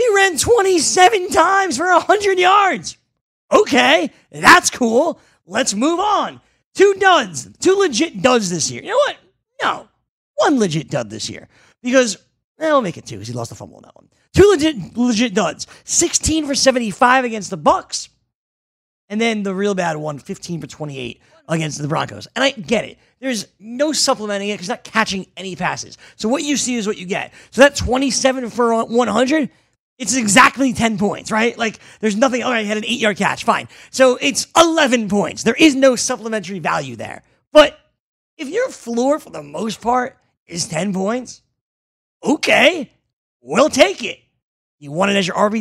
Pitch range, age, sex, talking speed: 195-280 Hz, 30-49, male, 185 wpm